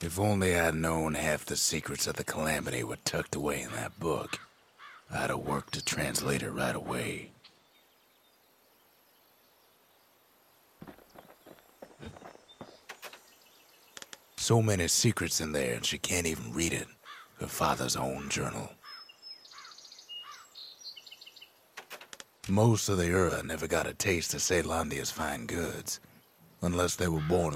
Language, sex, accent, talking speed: French, male, American, 120 wpm